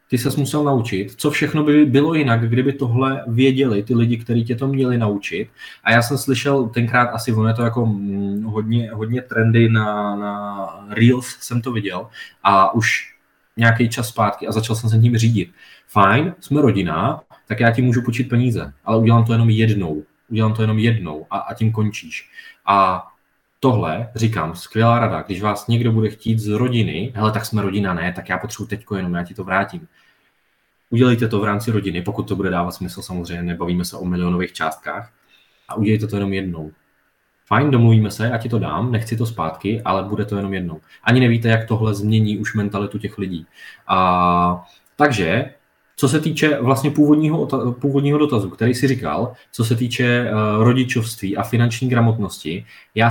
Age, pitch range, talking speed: 20-39, 100-120 Hz, 180 wpm